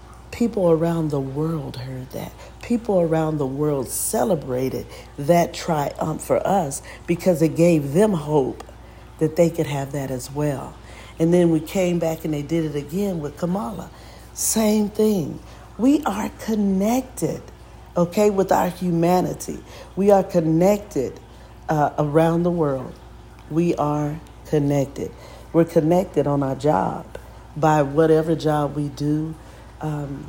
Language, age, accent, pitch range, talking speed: English, 50-69, American, 145-175 Hz, 135 wpm